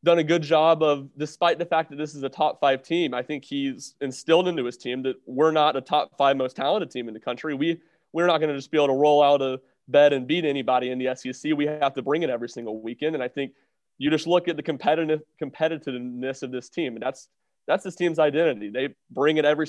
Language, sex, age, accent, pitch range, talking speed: English, male, 30-49, American, 135-155 Hz, 255 wpm